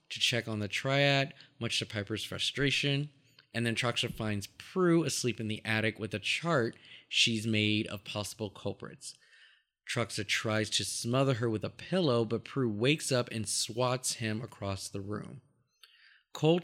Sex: male